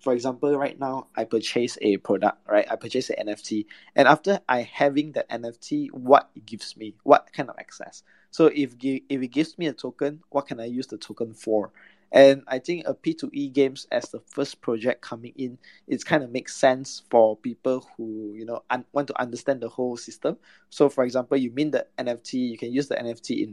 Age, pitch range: 20-39, 120-145 Hz